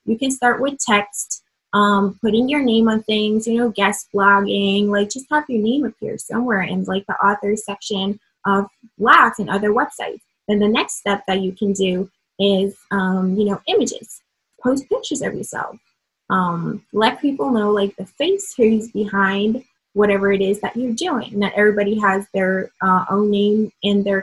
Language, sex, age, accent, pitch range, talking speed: English, female, 20-39, American, 195-225 Hz, 185 wpm